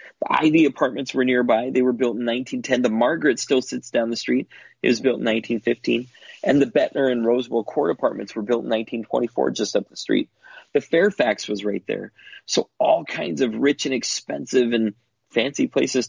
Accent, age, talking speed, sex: American, 30-49, 195 wpm, male